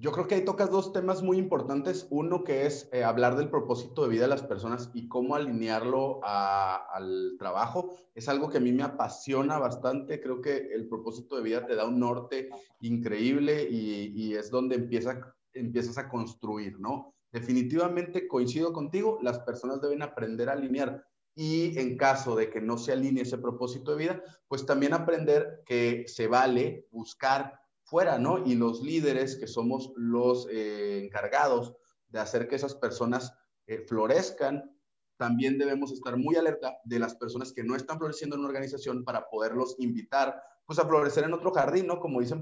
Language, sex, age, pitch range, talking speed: Spanish, male, 30-49, 120-155 Hz, 180 wpm